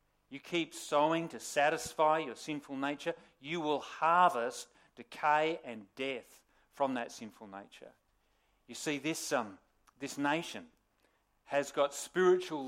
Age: 40-59